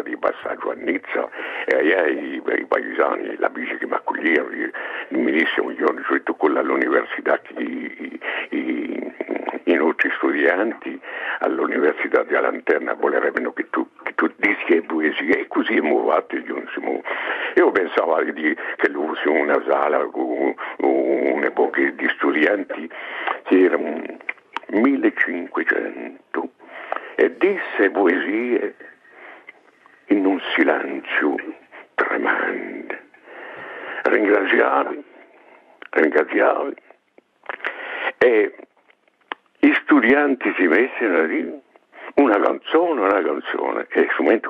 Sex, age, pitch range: male, 70-89, 335-455 Hz